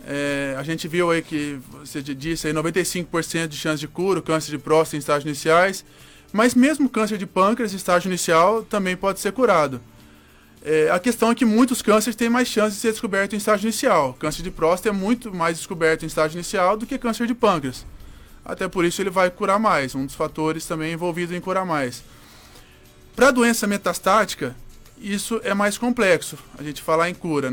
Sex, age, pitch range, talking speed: male, 20-39, 155-195 Hz, 200 wpm